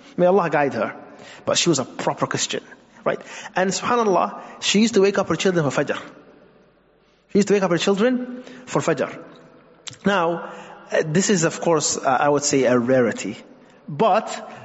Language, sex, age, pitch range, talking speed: English, male, 30-49, 145-190 Hz, 175 wpm